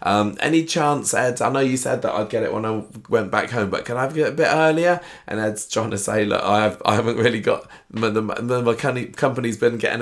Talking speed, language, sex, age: 250 wpm, English, male, 20-39